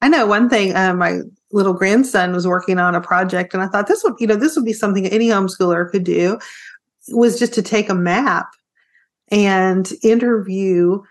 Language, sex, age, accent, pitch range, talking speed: English, female, 30-49, American, 190-240 Hz, 195 wpm